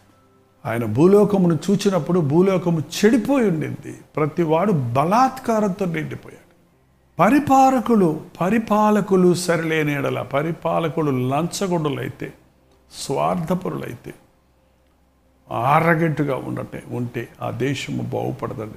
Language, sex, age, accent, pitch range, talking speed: Telugu, male, 60-79, native, 120-185 Hz, 75 wpm